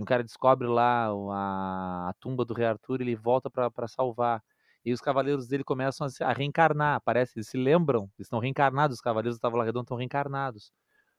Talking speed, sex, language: 200 wpm, male, Portuguese